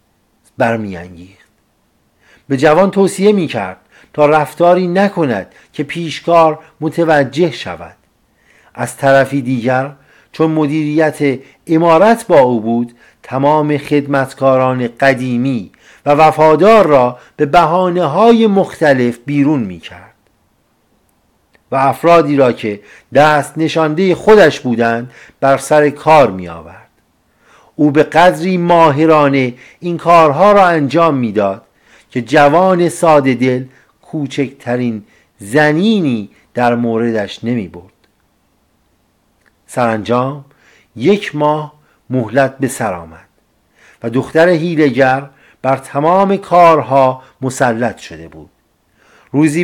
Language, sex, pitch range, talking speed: Persian, male, 120-160 Hz, 95 wpm